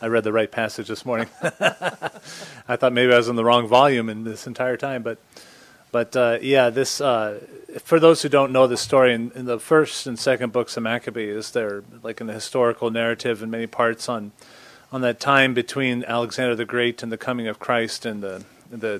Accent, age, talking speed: American, 30-49, 210 wpm